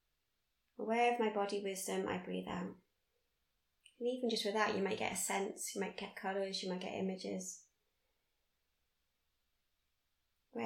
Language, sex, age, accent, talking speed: English, female, 20-39, British, 150 wpm